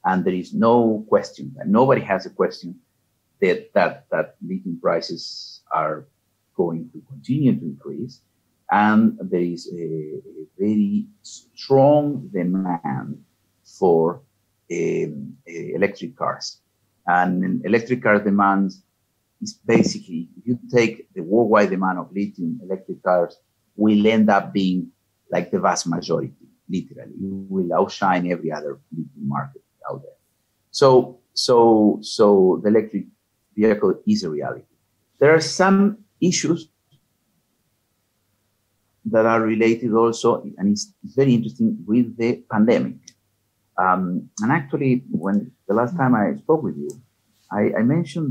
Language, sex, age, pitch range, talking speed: English, male, 50-69, 100-135 Hz, 130 wpm